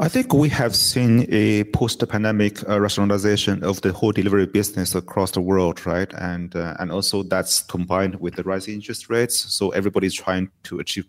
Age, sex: 30-49, male